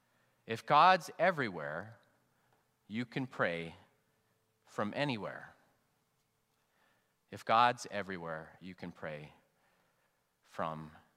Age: 30-49